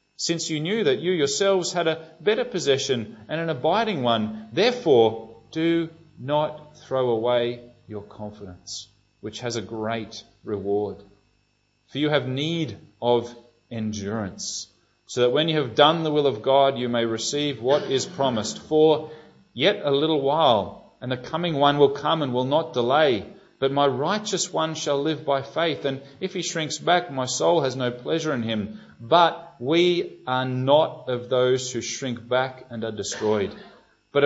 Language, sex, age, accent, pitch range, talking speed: English, male, 30-49, Australian, 115-150 Hz, 170 wpm